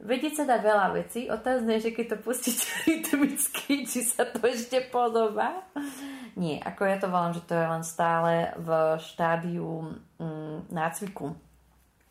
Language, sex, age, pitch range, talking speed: Slovak, female, 30-49, 170-220 Hz, 150 wpm